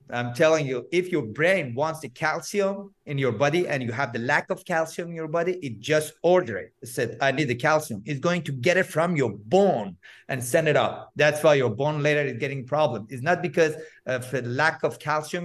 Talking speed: 235 wpm